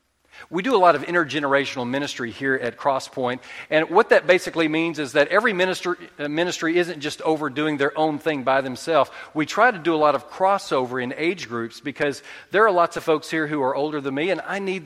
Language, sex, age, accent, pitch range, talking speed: English, male, 40-59, American, 135-170 Hz, 220 wpm